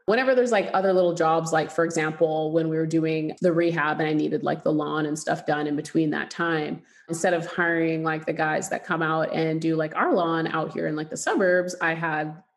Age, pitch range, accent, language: 30-49, 160-180 Hz, American, English